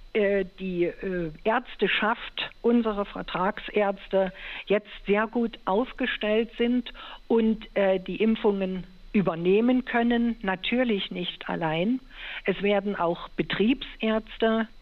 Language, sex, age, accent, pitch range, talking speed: German, female, 60-79, German, 185-235 Hz, 85 wpm